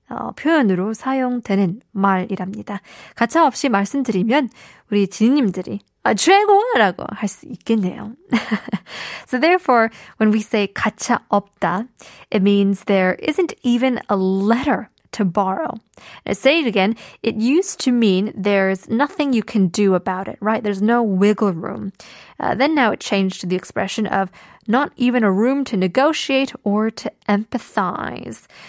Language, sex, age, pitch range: Korean, female, 20-39, 200-255 Hz